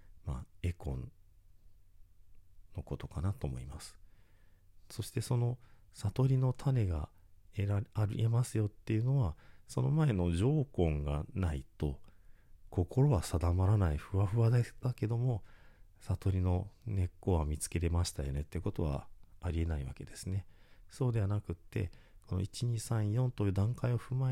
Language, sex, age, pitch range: Japanese, male, 40-59, 80-105 Hz